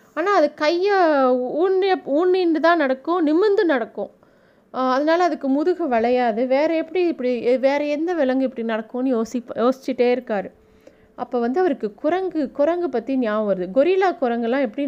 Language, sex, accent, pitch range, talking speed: Tamil, female, native, 220-295 Hz, 140 wpm